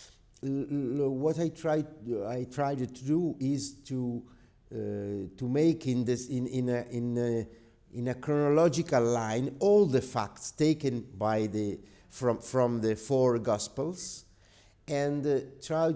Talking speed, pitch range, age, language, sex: 140 wpm, 105-140 Hz, 50-69, English, male